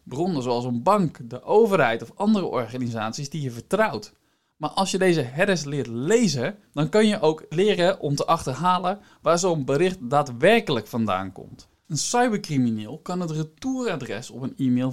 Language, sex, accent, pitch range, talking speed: Dutch, male, Dutch, 135-195 Hz, 165 wpm